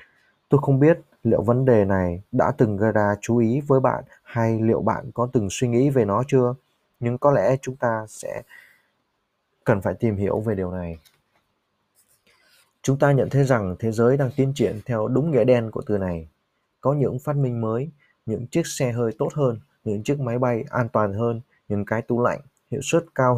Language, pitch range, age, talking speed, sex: Vietnamese, 110-135 Hz, 20-39, 205 wpm, male